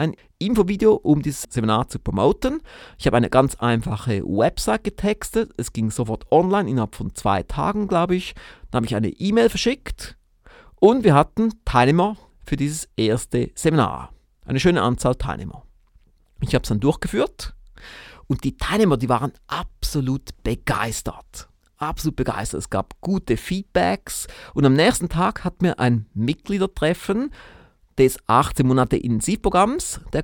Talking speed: 140 wpm